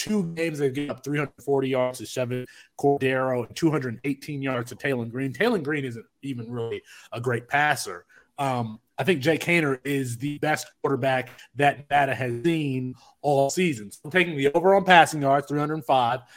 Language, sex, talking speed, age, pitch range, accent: English, male, 170 wpm, 30-49, 125-160 Hz, American